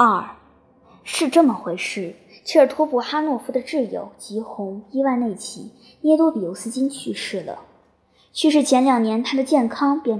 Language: Chinese